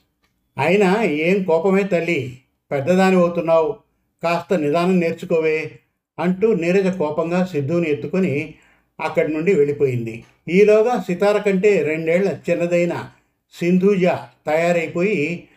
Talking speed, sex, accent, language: 95 wpm, male, native, Telugu